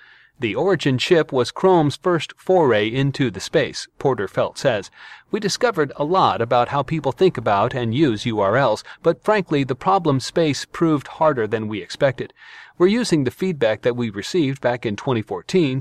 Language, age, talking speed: English, 40-59, 170 wpm